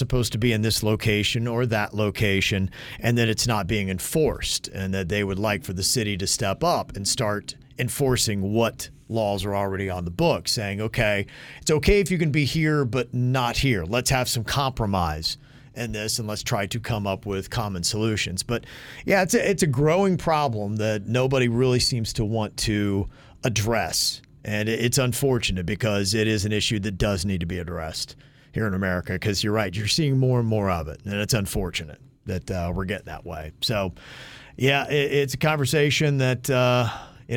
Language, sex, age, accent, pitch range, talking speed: English, male, 40-59, American, 100-130 Hz, 200 wpm